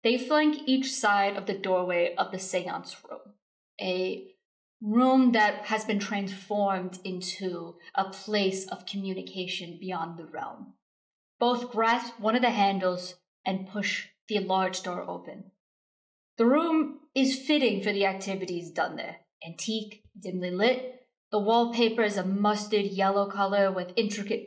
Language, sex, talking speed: English, female, 140 wpm